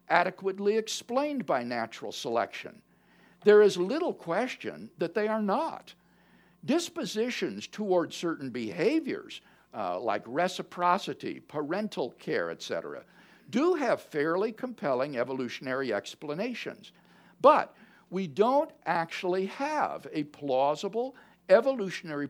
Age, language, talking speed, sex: 60-79, English, 100 wpm, male